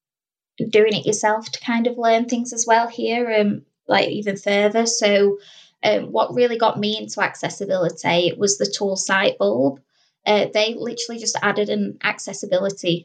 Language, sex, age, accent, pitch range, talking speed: English, female, 10-29, British, 195-225 Hz, 160 wpm